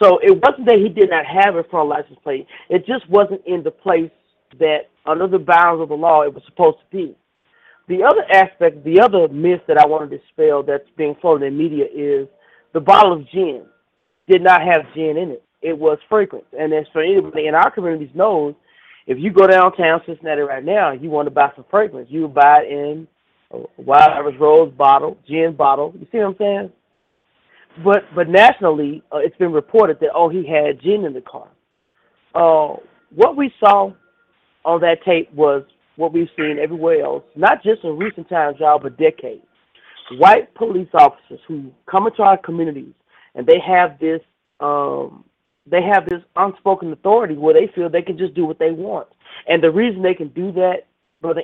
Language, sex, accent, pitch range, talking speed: English, male, American, 155-195 Hz, 200 wpm